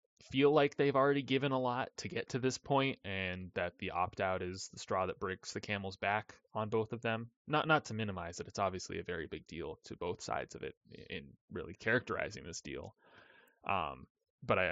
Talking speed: 210 wpm